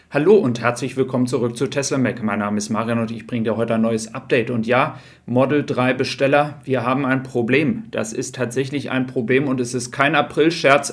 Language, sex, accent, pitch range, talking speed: German, male, German, 125-140 Hz, 215 wpm